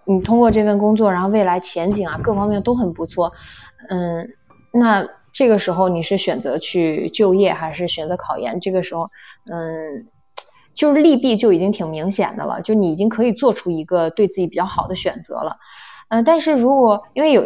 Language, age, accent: Chinese, 20-39, native